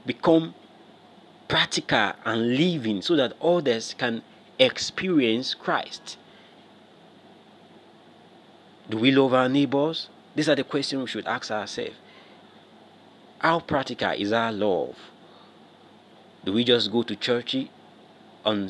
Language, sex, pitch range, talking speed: English, male, 110-140 Hz, 110 wpm